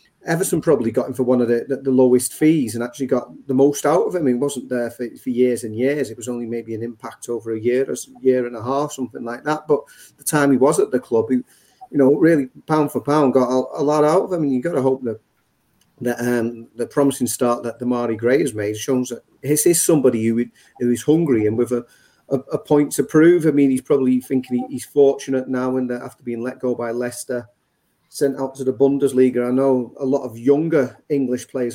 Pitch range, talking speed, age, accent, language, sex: 120-140 Hz, 245 wpm, 40-59, British, English, male